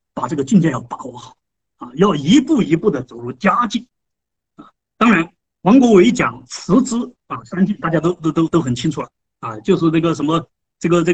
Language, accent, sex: Chinese, native, male